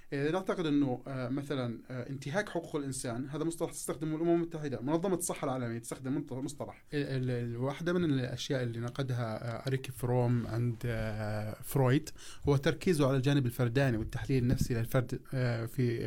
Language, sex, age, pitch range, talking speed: Arabic, male, 20-39, 120-155 Hz, 140 wpm